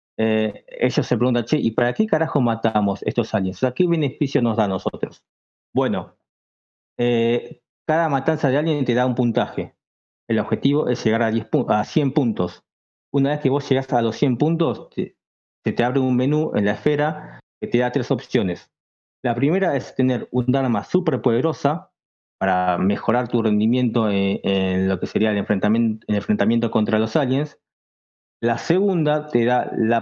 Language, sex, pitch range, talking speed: Spanish, male, 115-145 Hz, 180 wpm